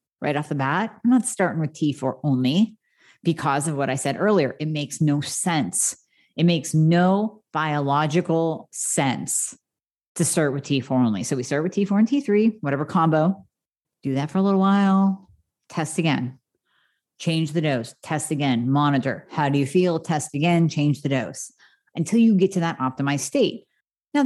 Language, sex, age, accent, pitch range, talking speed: English, female, 40-59, American, 145-210 Hz, 175 wpm